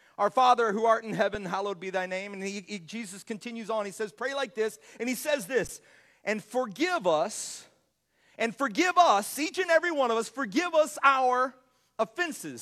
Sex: male